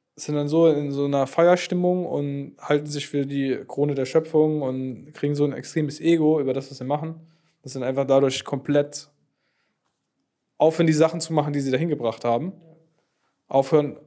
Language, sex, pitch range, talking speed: German, male, 130-160 Hz, 180 wpm